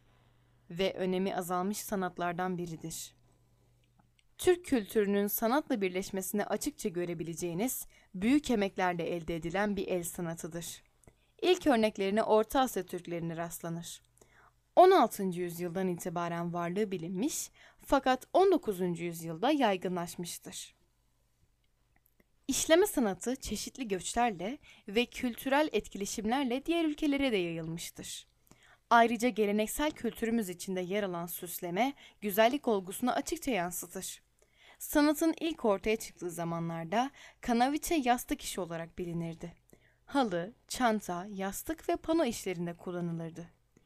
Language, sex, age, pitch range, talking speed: Turkish, female, 10-29, 175-245 Hz, 100 wpm